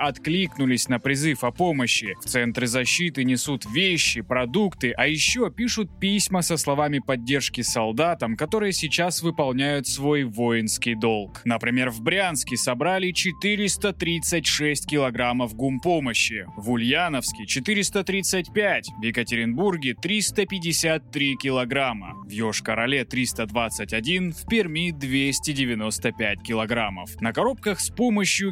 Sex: male